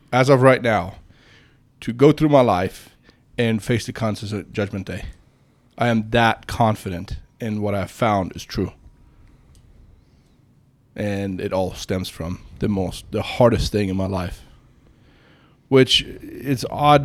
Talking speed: 150 wpm